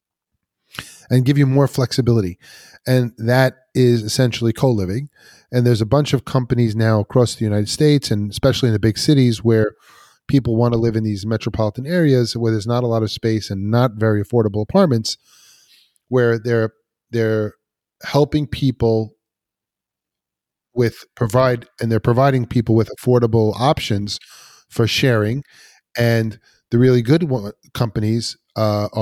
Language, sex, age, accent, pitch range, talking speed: English, male, 40-59, American, 110-125 Hz, 145 wpm